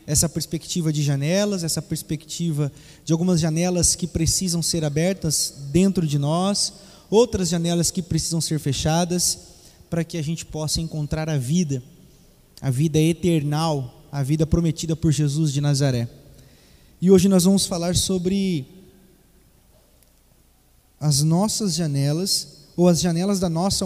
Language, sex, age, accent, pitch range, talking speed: Portuguese, male, 20-39, Brazilian, 150-205 Hz, 135 wpm